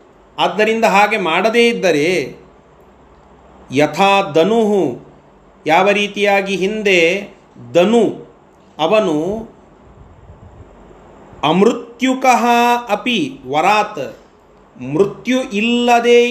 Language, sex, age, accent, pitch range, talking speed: Kannada, male, 40-59, native, 180-230 Hz, 55 wpm